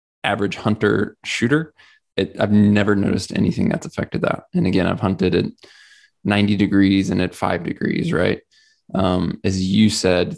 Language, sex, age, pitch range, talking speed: English, male, 20-39, 90-105 Hz, 150 wpm